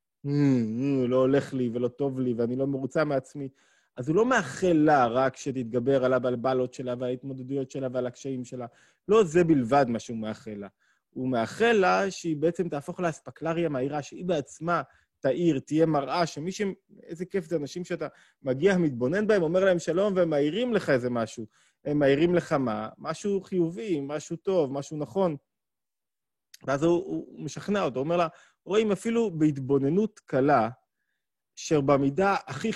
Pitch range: 130-180 Hz